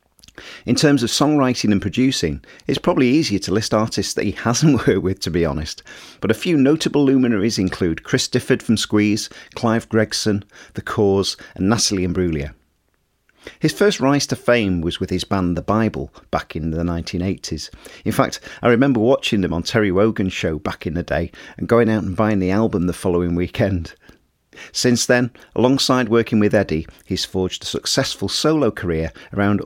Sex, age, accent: male, 40-59, British